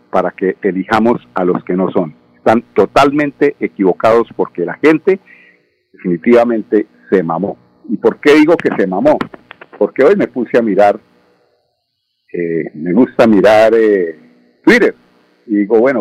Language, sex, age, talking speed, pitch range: Spanish, male, 50-69, 145 wpm, 85-140 Hz